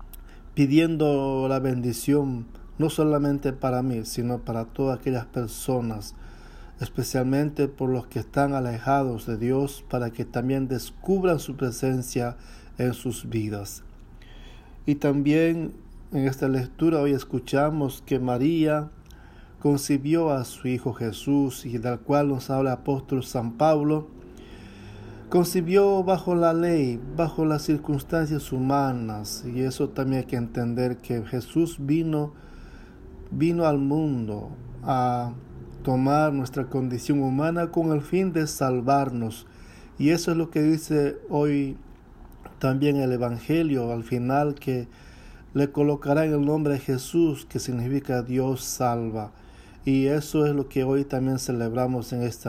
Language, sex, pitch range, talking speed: English, male, 120-145 Hz, 135 wpm